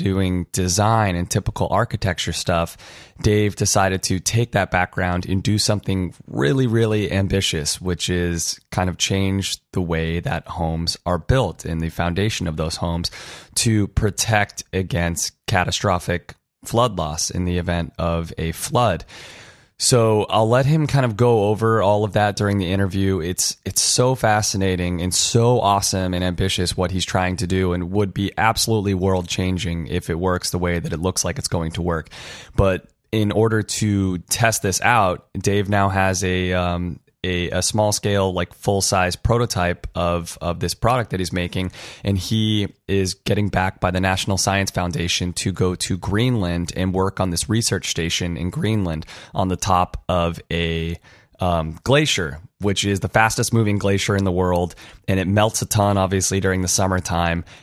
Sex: male